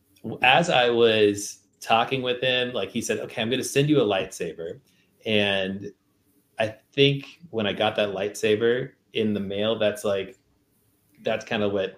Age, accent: 20-39, American